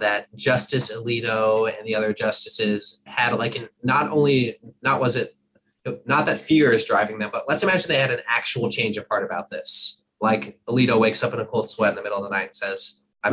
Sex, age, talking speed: male, 20-39, 220 wpm